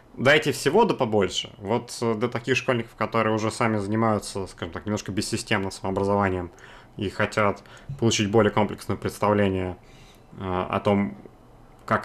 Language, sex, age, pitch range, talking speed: Russian, male, 30-49, 105-130 Hz, 130 wpm